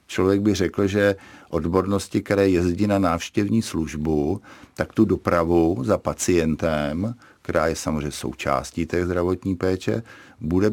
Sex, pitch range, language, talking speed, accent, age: male, 85-100 Hz, Czech, 130 wpm, native, 50-69